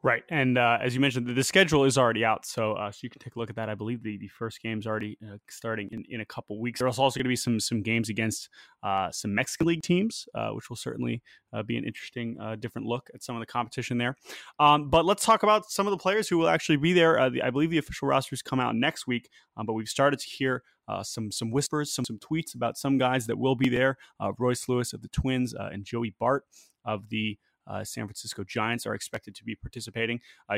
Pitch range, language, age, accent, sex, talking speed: 115-135 Hz, English, 20-39, American, male, 265 wpm